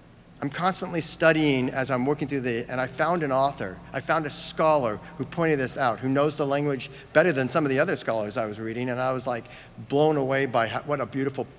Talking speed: 235 wpm